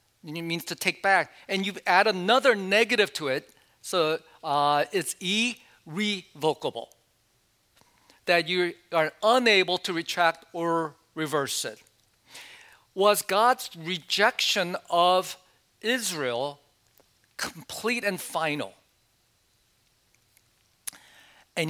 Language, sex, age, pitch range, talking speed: English, male, 50-69, 160-210 Hz, 95 wpm